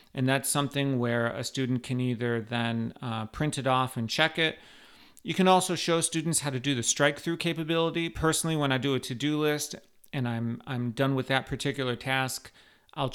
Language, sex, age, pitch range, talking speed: English, male, 40-59, 125-150 Hz, 205 wpm